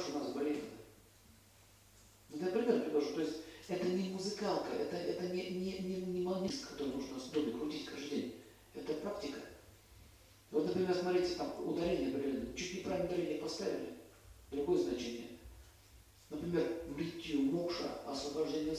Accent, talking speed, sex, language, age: native, 125 wpm, male, Russian, 50-69